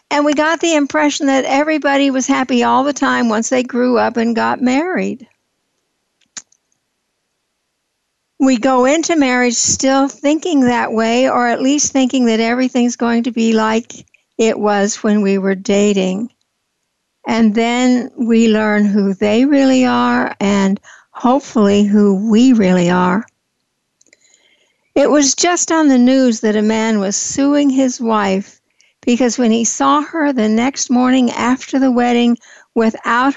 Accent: American